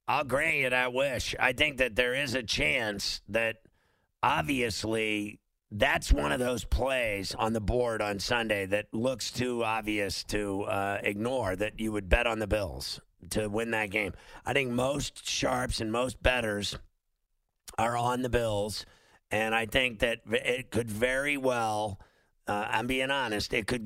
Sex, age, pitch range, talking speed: male, 50-69, 105-120 Hz, 170 wpm